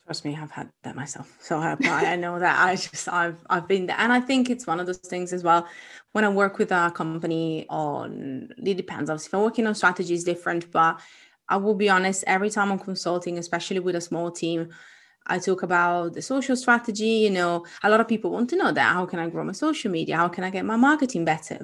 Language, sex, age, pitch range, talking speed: English, female, 20-39, 170-220 Hz, 245 wpm